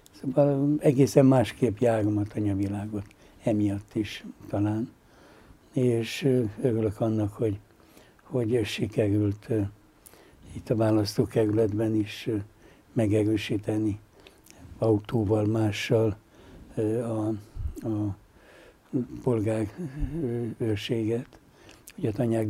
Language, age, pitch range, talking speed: Hungarian, 60-79, 105-120 Hz, 70 wpm